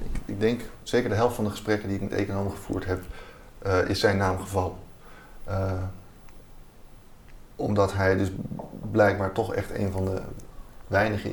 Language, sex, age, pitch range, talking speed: Dutch, male, 30-49, 90-105 Hz, 160 wpm